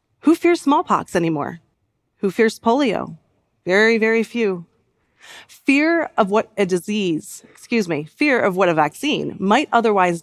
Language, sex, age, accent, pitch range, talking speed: English, female, 30-49, American, 165-220 Hz, 140 wpm